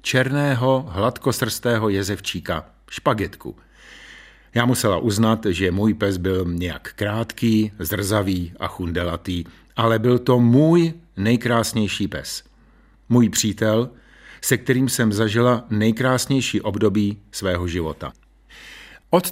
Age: 50-69